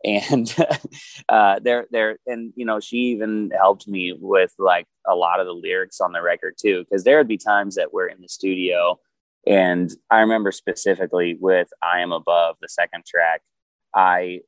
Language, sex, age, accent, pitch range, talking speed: English, male, 20-39, American, 90-125 Hz, 180 wpm